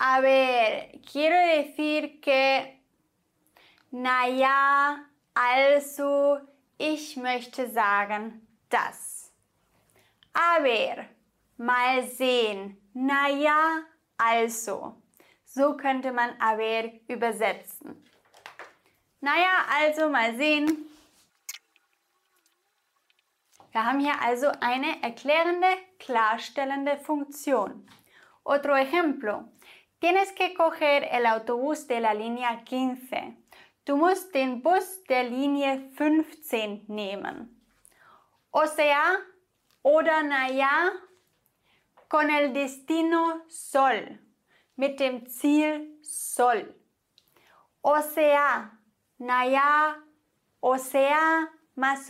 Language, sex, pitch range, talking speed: English, female, 255-310 Hz, 85 wpm